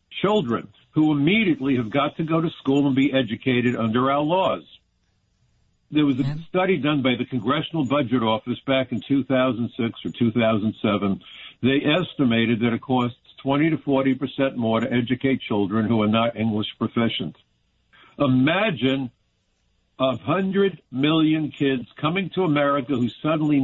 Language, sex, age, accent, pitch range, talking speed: English, male, 60-79, American, 125-150 Hz, 140 wpm